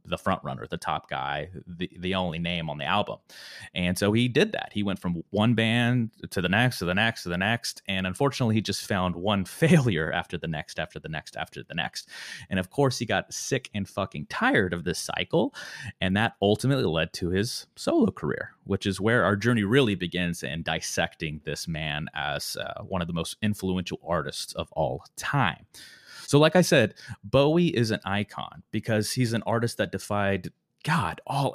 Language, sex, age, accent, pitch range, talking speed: English, male, 30-49, American, 90-120 Hz, 200 wpm